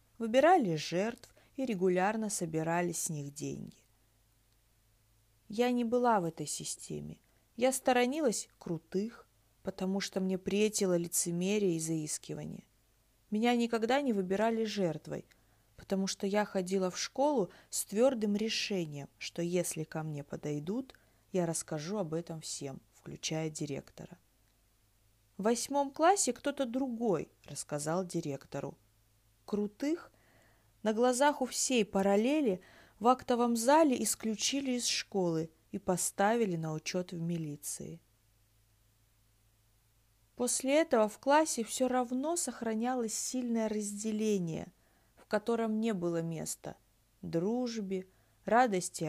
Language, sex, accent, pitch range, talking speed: Russian, female, native, 145-230 Hz, 110 wpm